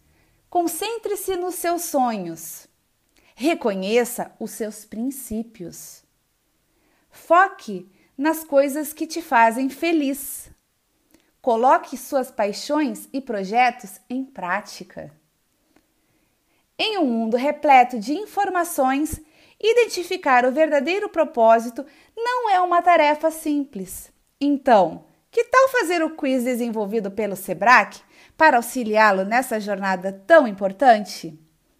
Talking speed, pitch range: 100 wpm, 230-330 Hz